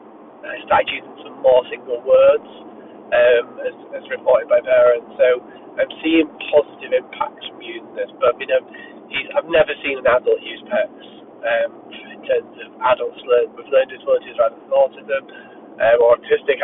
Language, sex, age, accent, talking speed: English, male, 30-49, British, 165 wpm